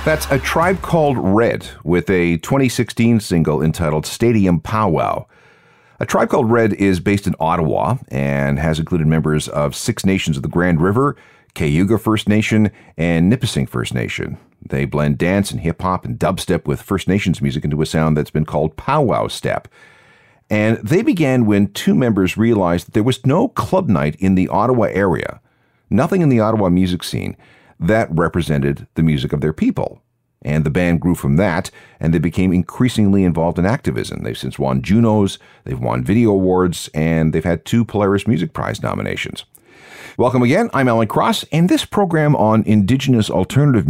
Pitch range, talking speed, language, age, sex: 80-115 Hz, 175 wpm, English, 40-59, male